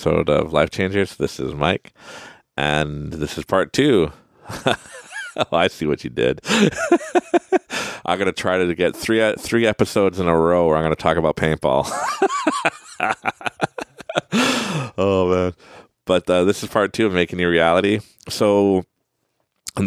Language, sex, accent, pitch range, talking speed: English, male, American, 80-125 Hz, 150 wpm